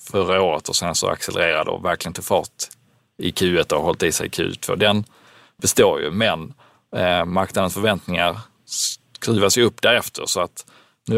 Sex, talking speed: male, 165 wpm